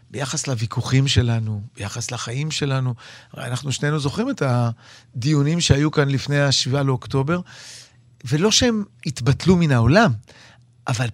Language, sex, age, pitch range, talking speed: Hebrew, male, 40-59, 120-155 Hz, 125 wpm